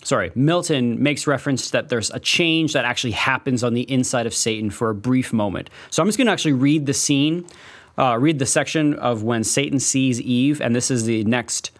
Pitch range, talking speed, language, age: 120-155 Hz, 220 wpm, English, 30-49